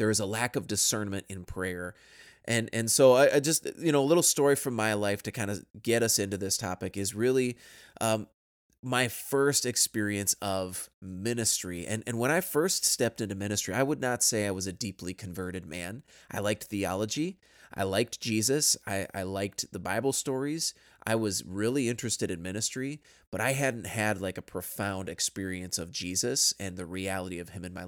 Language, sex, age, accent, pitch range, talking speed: English, male, 20-39, American, 95-115 Hz, 195 wpm